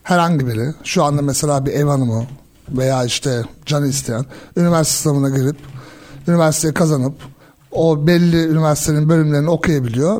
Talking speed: 130 wpm